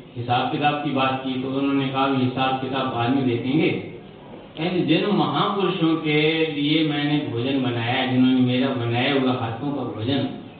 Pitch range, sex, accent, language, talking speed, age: 125-165 Hz, male, native, Hindi, 160 wpm, 50-69